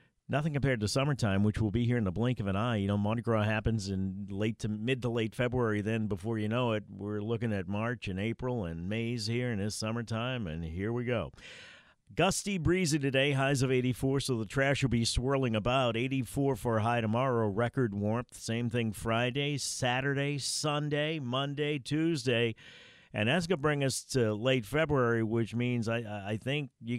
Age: 50-69